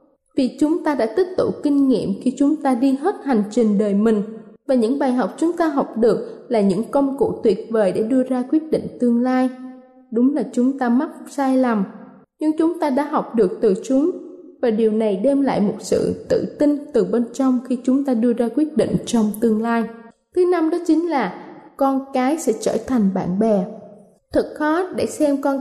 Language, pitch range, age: Thai, 225-290 Hz, 20-39